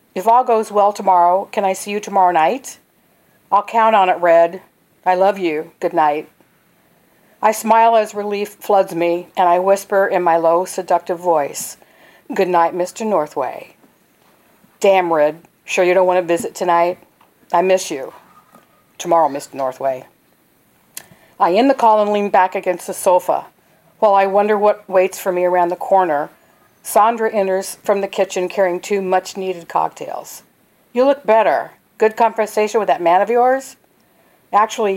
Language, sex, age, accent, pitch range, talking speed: English, female, 50-69, American, 175-210 Hz, 160 wpm